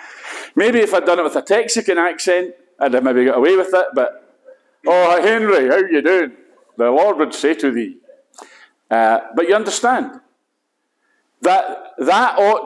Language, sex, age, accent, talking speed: English, male, 50-69, British, 165 wpm